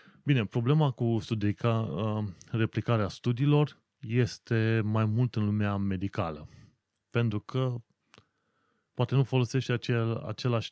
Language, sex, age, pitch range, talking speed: Romanian, male, 30-49, 100-125 Hz, 105 wpm